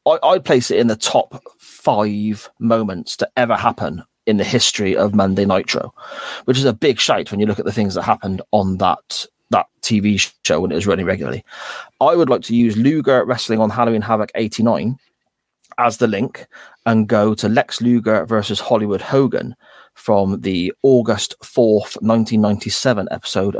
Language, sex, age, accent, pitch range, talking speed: English, male, 30-49, British, 105-120 Hz, 175 wpm